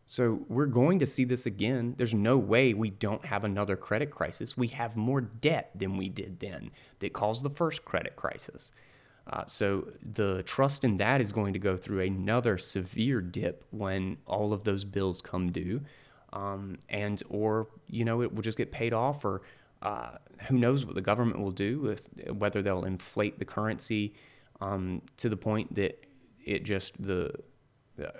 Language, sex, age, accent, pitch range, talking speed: English, male, 30-49, American, 100-130 Hz, 185 wpm